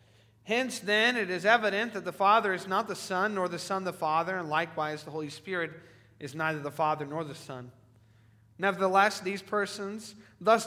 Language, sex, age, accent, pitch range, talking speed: English, male, 40-59, American, 150-200 Hz, 185 wpm